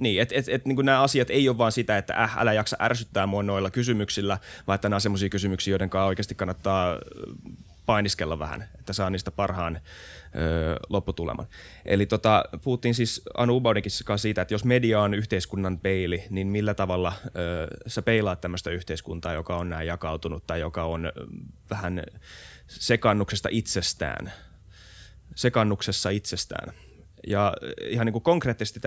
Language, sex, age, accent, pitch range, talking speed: Finnish, male, 20-39, native, 90-110 Hz, 155 wpm